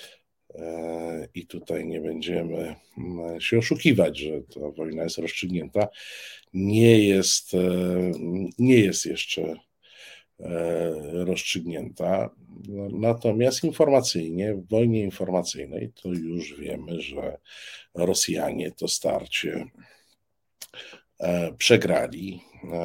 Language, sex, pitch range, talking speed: Polish, male, 85-105 Hz, 80 wpm